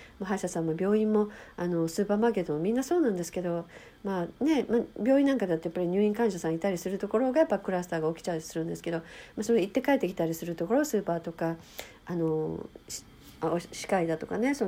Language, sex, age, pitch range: Japanese, female, 50-69, 165-225 Hz